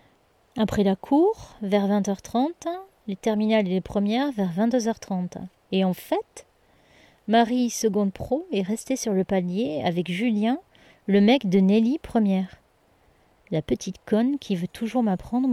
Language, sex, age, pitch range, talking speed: French, female, 30-49, 190-255 Hz, 150 wpm